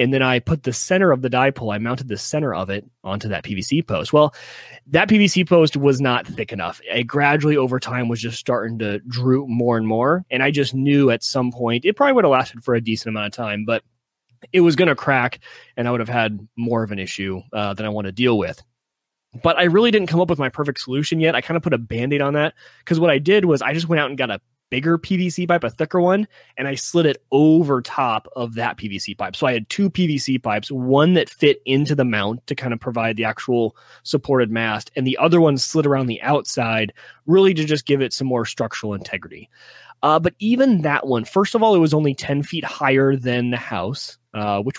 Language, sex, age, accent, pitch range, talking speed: English, male, 30-49, American, 115-155 Hz, 245 wpm